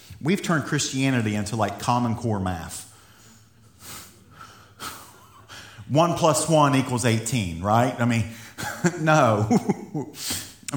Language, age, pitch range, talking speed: English, 50-69, 105-150 Hz, 100 wpm